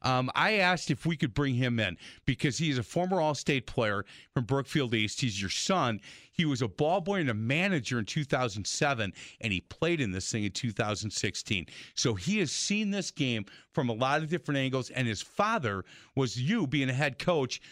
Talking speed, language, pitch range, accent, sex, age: 205 wpm, English, 120-160 Hz, American, male, 40-59